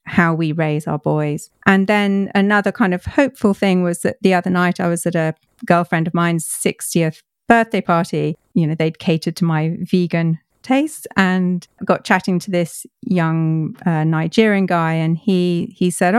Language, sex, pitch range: English, female, 165-195 Hz